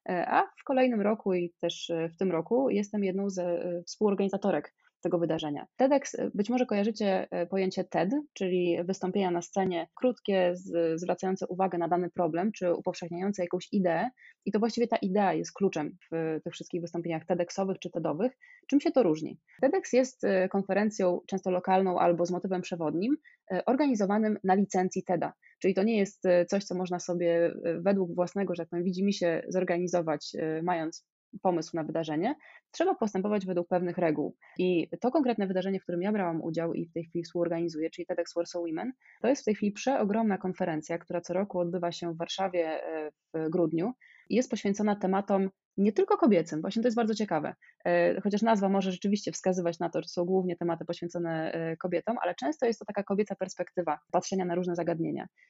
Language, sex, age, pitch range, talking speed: Polish, female, 20-39, 170-210 Hz, 175 wpm